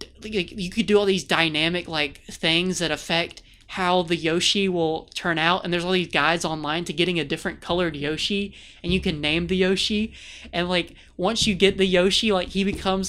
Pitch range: 160-190 Hz